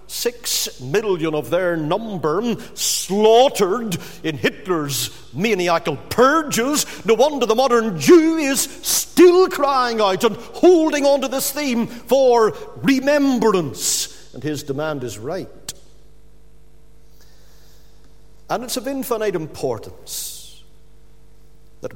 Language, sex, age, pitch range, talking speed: English, male, 50-69, 165-245 Hz, 105 wpm